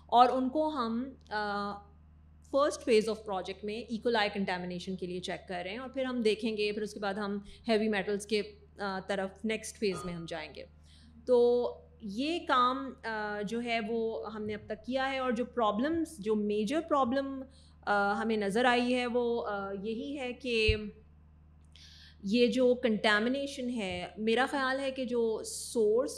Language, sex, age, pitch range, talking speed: Urdu, female, 30-49, 190-245 Hz, 165 wpm